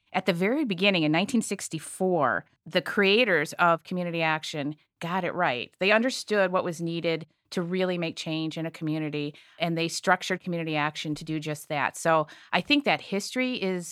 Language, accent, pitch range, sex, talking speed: English, American, 155-190 Hz, female, 175 wpm